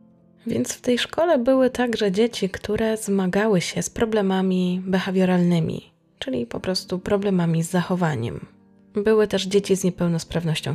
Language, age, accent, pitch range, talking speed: Polish, 20-39, native, 160-215 Hz, 135 wpm